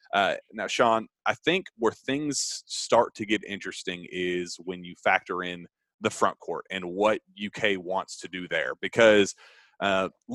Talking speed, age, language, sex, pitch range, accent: 160 wpm, 30-49, English, male, 100-125 Hz, American